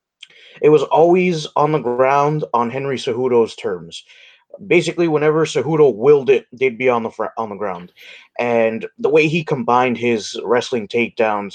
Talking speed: 160 wpm